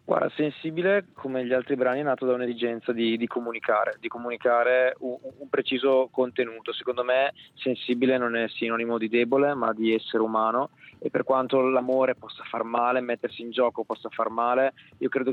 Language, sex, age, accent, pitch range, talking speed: Italian, male, 20-39, native, 115-135 Hz, 180 wpm